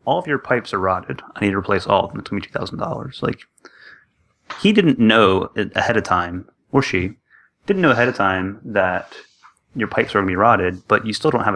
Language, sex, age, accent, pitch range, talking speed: English, male, 30-49, American, 90-105 Hz, 225 wpm